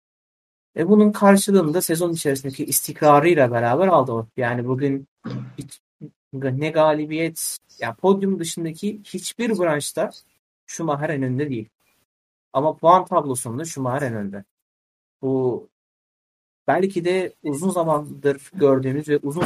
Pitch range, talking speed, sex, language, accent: 130-165 Hz, 105 wpm, male, Turkish, native